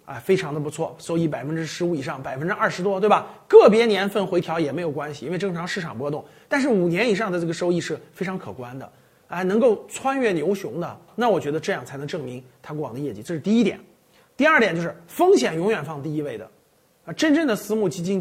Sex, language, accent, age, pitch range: male, Chinese, native, 30-49, 155-225 Hz